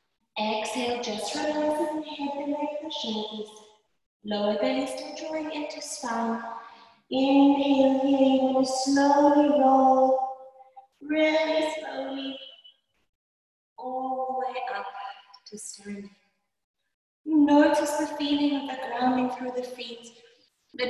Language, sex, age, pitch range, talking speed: English, female, 20-39, 210-270 Hz, 105 wpm